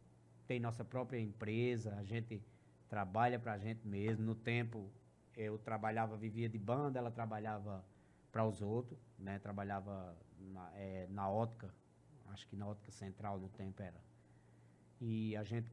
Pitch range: 110-135 Hz